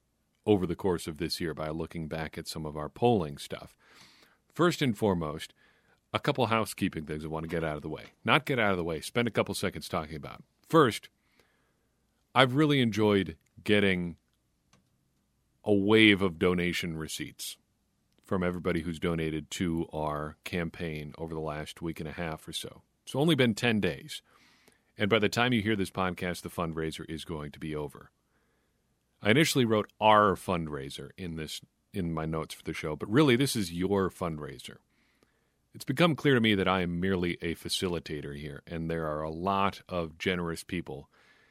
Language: English